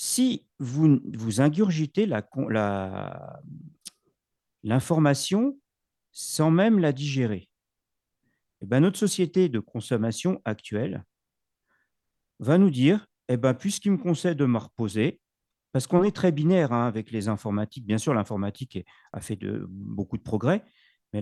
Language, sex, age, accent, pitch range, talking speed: French, male, 50-69, French, 110-170 Hz, 135 wpm